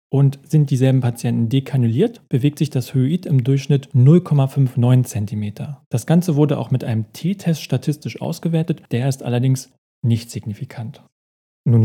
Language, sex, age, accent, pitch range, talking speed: German, male, 40-59, German, 125-155 Hz, 140 wpm